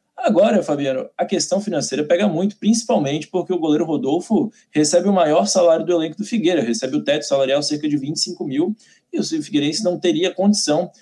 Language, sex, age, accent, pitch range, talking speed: Portuguese, male, 20-39, Brazilian, 150-215 Hz, 185 wpm